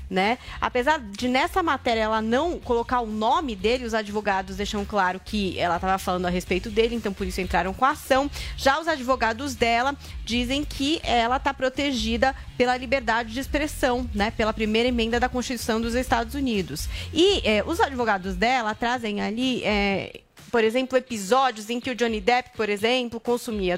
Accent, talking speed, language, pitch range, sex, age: Brazilian, 170 wpm, Portuguese, 215-265 Hz, female, 30-49